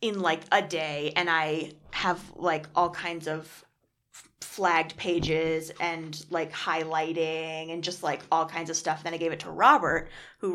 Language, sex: English, female